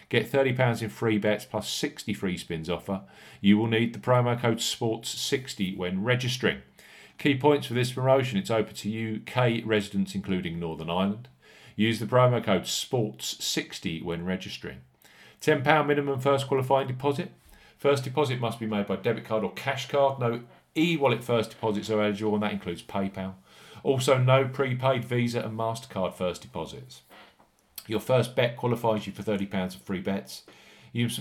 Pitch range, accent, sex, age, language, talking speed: 105-135 Hz, British, male, 40-59, English, 160 wpm